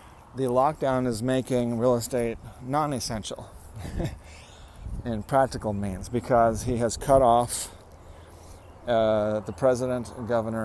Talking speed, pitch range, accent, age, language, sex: 105 wpm, 95-115 Hz, American, 40-59, English, male